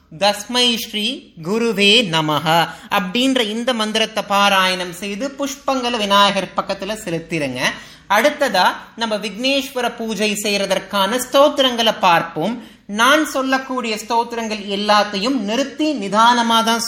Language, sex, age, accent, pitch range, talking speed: Tamil, male, 30-49, native, 200-250 Hz, 95 wpm